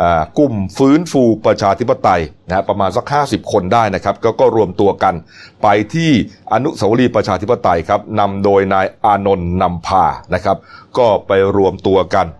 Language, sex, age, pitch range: Thai, male, 30-49, 95-110 Hz